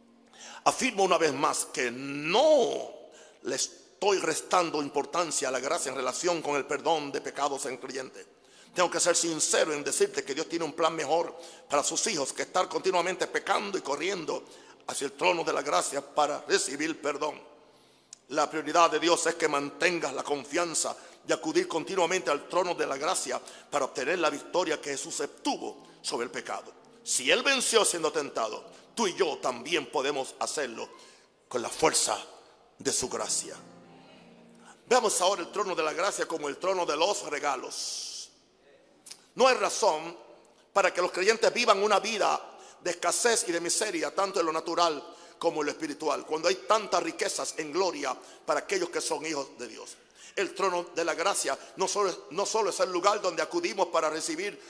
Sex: male